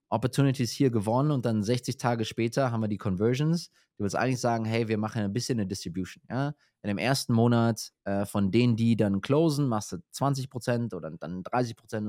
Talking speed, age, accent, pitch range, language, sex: 195 wpm, 20-39, German, 100-130 Hz, German, male